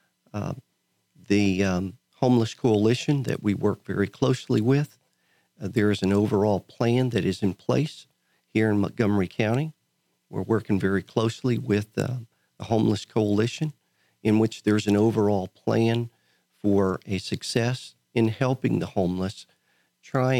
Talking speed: 140 wpm